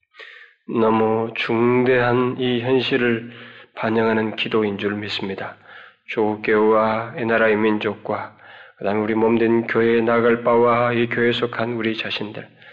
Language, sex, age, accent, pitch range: Korean, male, 20-39, native, 105-120 Hz